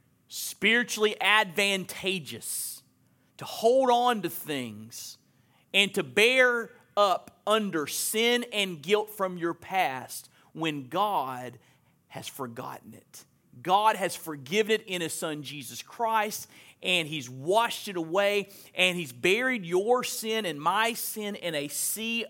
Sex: male